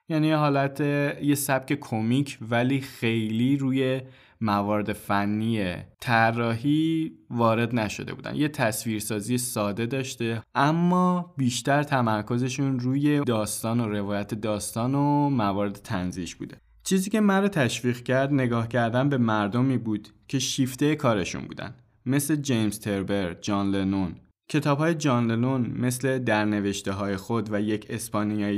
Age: 20-39